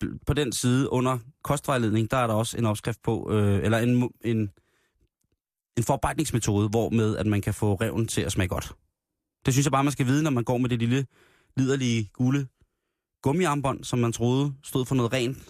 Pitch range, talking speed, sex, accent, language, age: 105-130 Hz, 200 wpm, male, native, Danish, 20-39